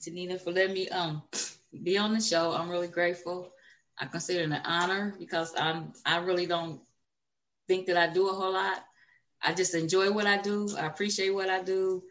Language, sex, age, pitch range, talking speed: English, female, 20-39, 175-205 Hz, 200 wpm